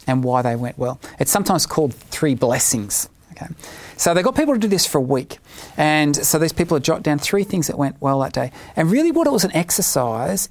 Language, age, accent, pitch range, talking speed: English, 40-59, Australian, 130-165 Hz, 240 wpm